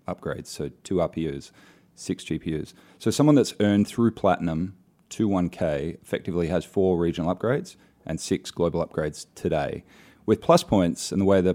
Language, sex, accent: English, male, Australian